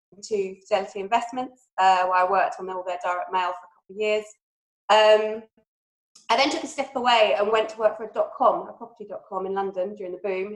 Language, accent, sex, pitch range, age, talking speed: English, British, female, 180-205 Hz, 20-39, 235 wpm